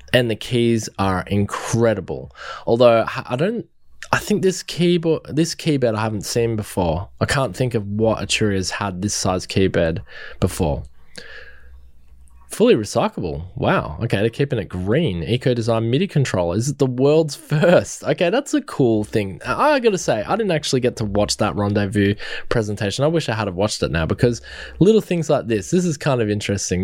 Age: 20-39